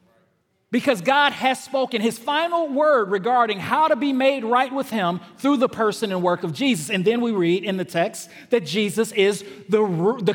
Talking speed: 195 wpm